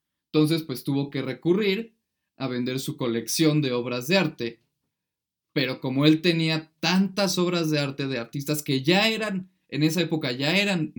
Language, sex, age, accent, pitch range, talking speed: Spanish, male, 20-39, Mexican, 135-160 Hz, 170 wpm